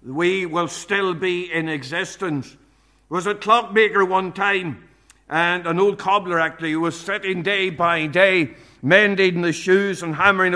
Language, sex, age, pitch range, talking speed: English, male, 60-79, 165-195 Hz, 155 wpm